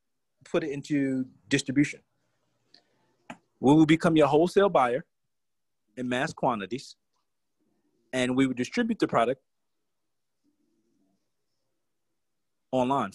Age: 30-49